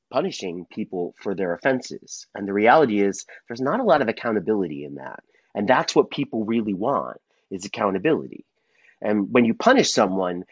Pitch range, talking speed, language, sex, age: 100-140 Hz, 170 wpm, English, male, 30-49